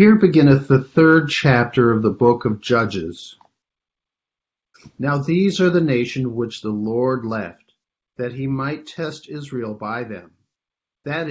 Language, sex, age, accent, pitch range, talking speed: English, male, 50-69, American, 115-145 Hz, 145 wpm